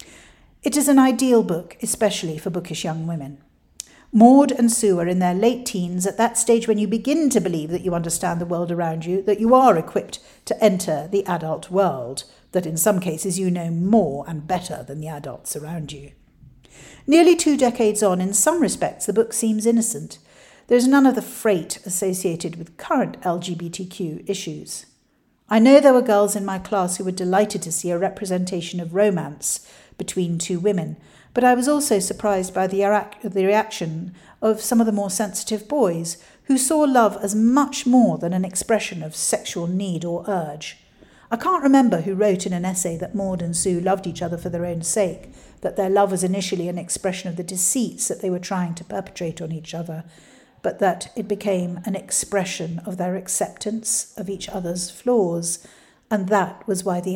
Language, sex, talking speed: English, female, 195 wpm